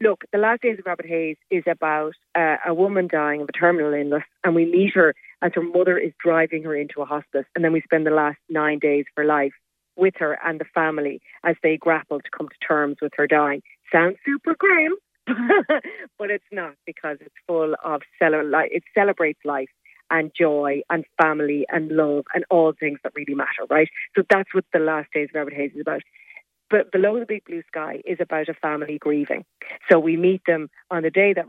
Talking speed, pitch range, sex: 215 wpm, 150-180 Hz, female